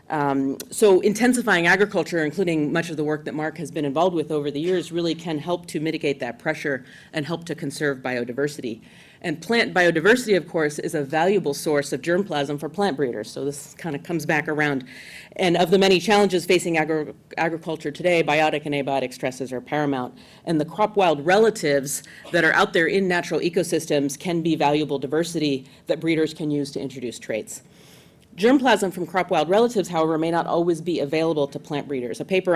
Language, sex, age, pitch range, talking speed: English, female, 40-59, 145-175 Hz, 190 wpm